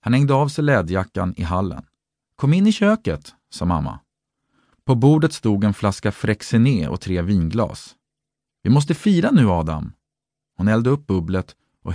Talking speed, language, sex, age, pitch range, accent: 160 wpm, Swedish, male, 40-59, 85-135 Hz, native